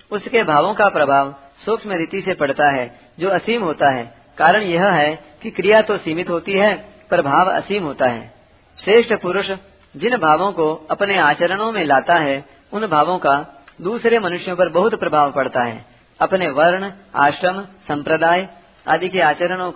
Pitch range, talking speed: 145-190 Hz, 160 wpm